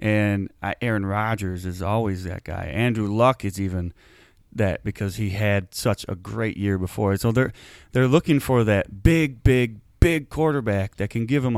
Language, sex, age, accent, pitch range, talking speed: English, male, 30-49, American, 100-135 Hz, 175 wpm